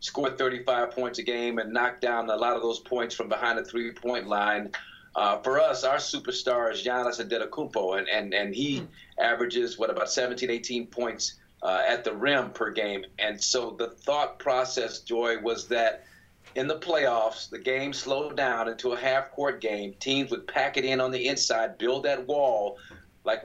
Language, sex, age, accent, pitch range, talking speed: English, male, 40-59, American, 115-135 Hz, 190 wpm